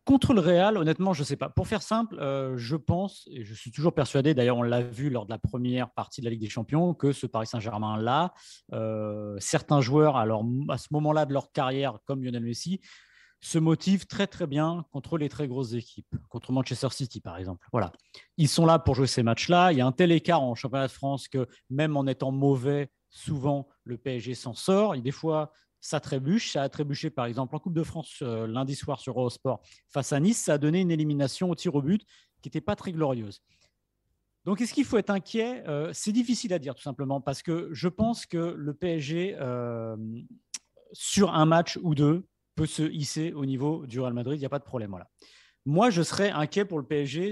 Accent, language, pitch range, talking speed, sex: French, French, 125-170 Hz, 220 wpm, male